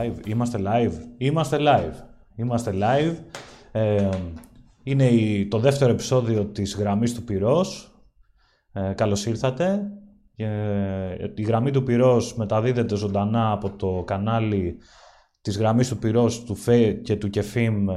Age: 20-39